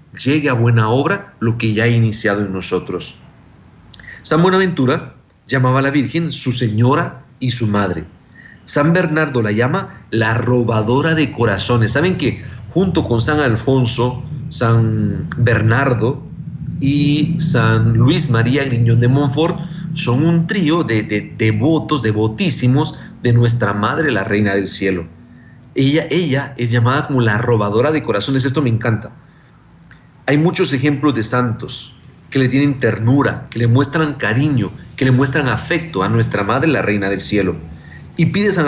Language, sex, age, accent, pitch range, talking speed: Spanish, male, 50-69, Mexican, 115-150 Hz, 155 wpm